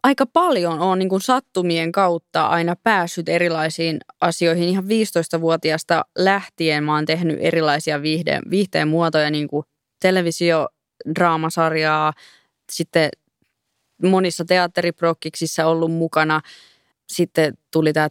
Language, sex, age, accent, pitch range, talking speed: Finnish, female, 20-39, native, 155-190 Hz, 105 wpm